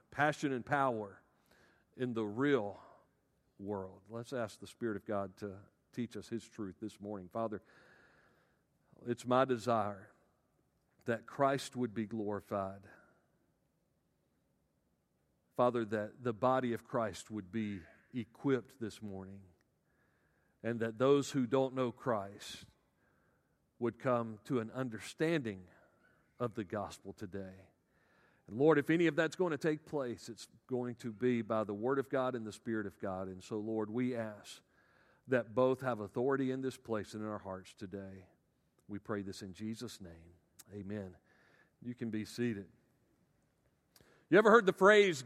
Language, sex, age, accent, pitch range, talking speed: English, male, 50-69, American, 105-140 Hz, 150 wpm